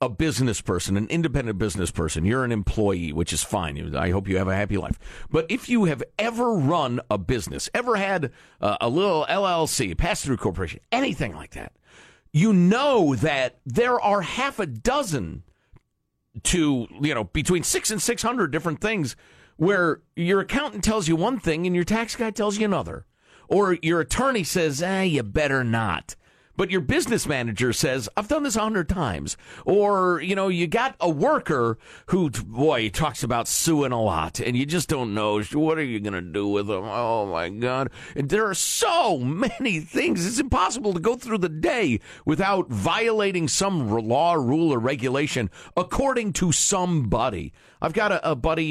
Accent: American